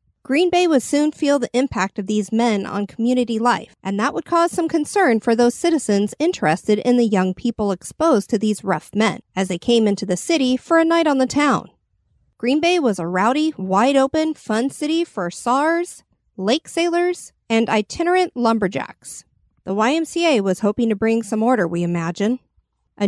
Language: English